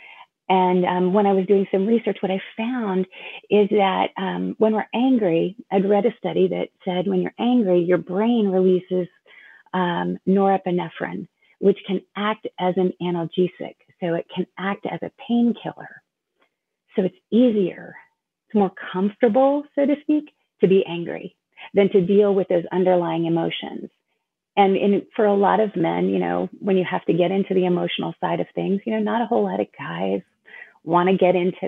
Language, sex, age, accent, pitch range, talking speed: English, female, 30-49, American, 180-215 Hz, 180 wpm